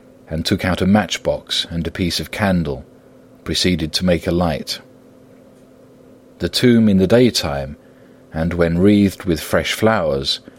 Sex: male